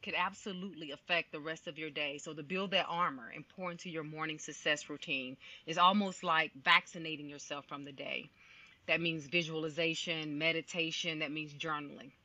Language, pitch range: English, 160-210 Hz